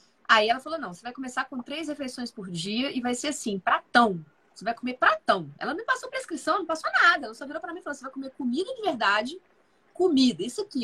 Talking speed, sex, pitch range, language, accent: 245 wpm, female, 240-345 Hz, Portuguese, Brazilian